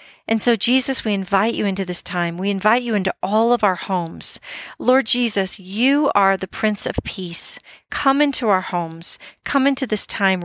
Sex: female